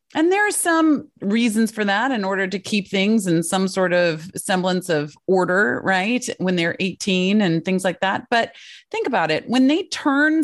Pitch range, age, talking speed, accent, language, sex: 175-245 Hz, 30-49, 195 wpm, American, English, female